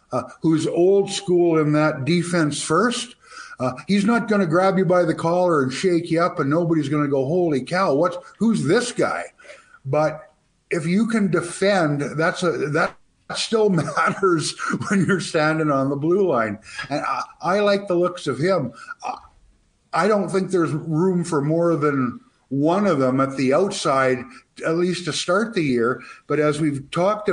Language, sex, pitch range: English, male, 150-190 Hz